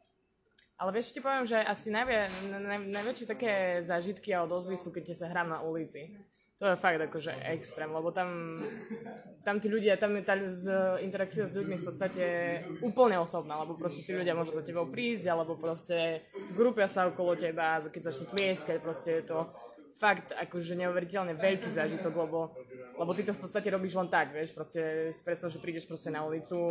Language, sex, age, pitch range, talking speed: Slovak, female, 20-39, 160-195 Hz, 180 wpm